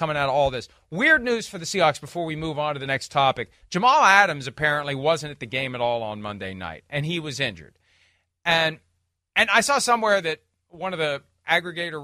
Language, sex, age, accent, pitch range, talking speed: English, male, 40-59, American, 130-180 Hz, 220 wpm